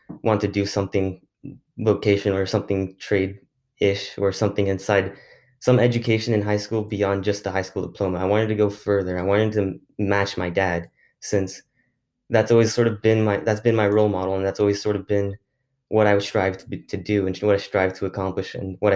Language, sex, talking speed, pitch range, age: English, male, 210 wpm, 95-110 Hz, 20-39